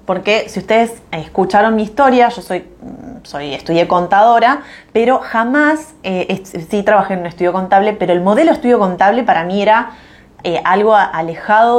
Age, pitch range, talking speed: 20-39, 175-240 Hz, 160 wpm